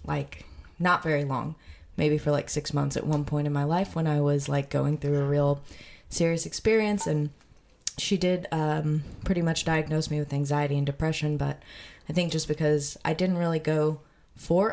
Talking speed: 190 wpm